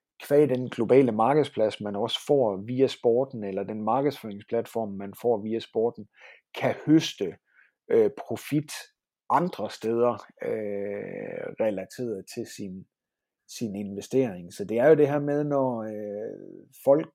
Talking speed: 135 wpm